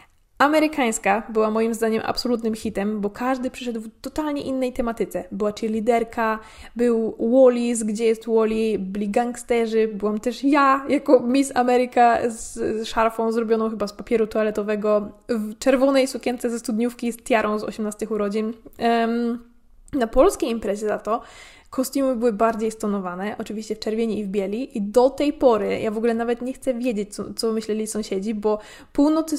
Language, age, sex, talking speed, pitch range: Polish, 10-29, female, 160 wpm, 215-255 Hz